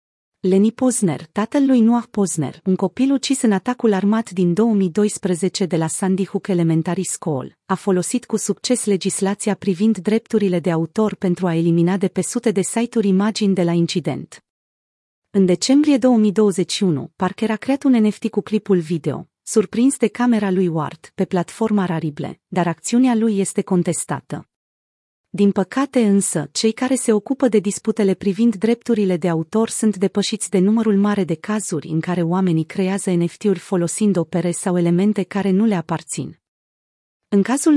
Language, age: Romanian, 40-59